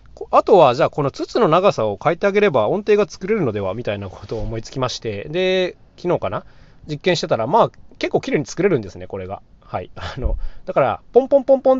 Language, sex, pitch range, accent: Japanese, male, 110-180 Hz, native